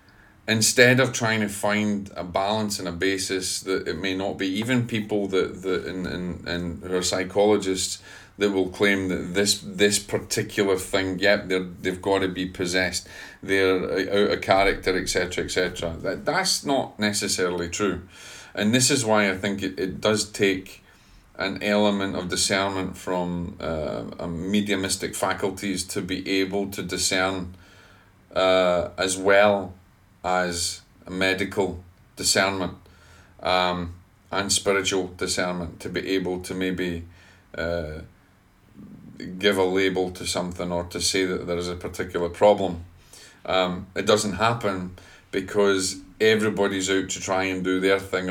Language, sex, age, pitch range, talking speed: English, male, 40-59, 90-100 Hz, 150 wpm